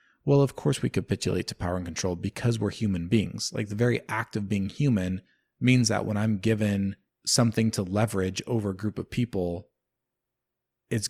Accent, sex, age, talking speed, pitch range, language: American, male, 20-39, 185 wpm, 95-120 Hz, English